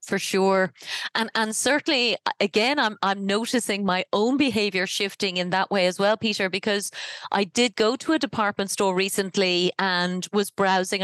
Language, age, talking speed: English, 30-49, 170 wpm